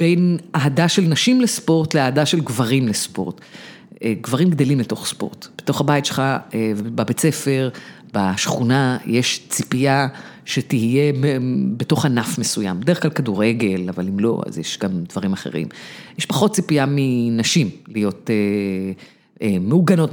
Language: Hebrew